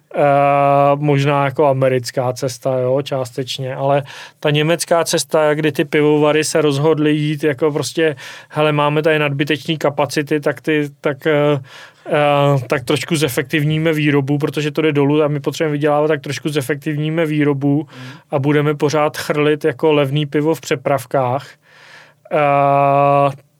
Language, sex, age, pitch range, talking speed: Czech, male, 30-49, 140-155 Hz, 140 wpm